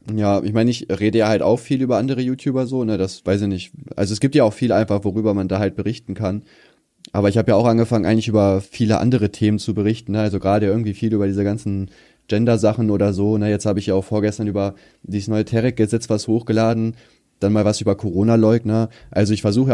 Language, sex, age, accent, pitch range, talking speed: German, male, 20-39, German, 100-120 Hz, 230 wpm